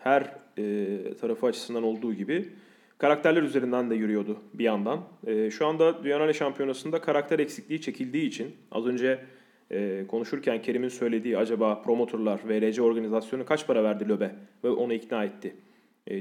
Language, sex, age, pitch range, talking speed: Turkish, male, 30-49, 120-165 Hz, 150 wpm